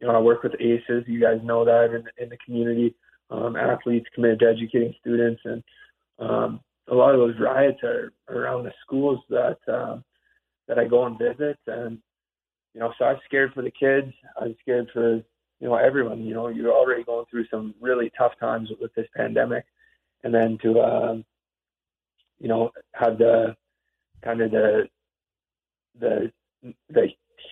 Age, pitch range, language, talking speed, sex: 20-39, 115-130 Hz, English, 170 wpm, male